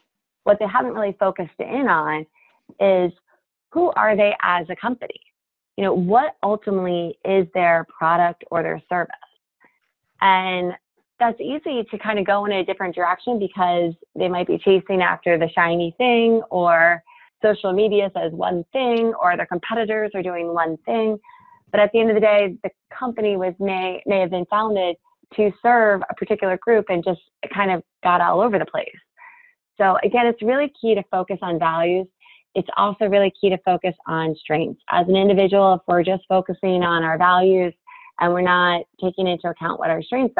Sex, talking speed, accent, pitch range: female, 180 wpm, American, 170-215 Hz